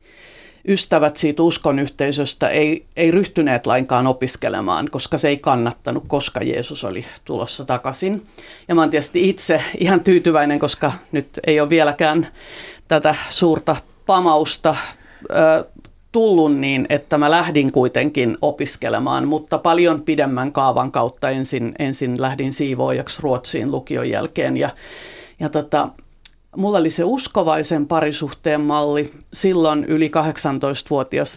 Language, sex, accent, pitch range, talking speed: Finnish, female, native, 145-165 Hz, 125 wpm